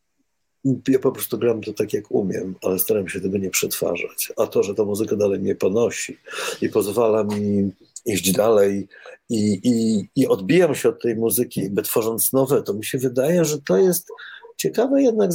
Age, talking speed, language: 50-69, 185 wpm, Polish